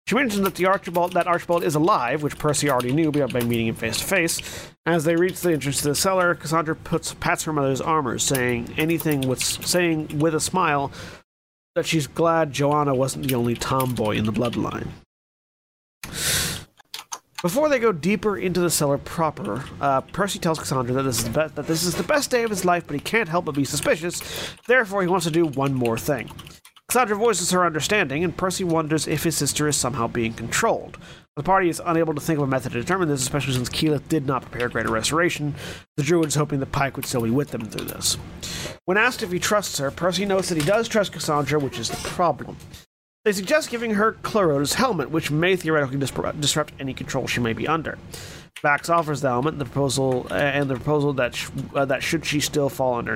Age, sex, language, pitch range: 40-59, male, English, 135-175 Hz